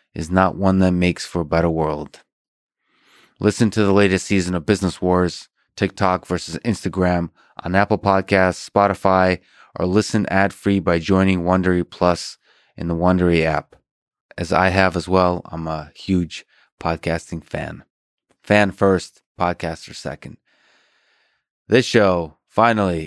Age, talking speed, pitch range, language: 20-39, 135 wpm, 85-100 Hz, English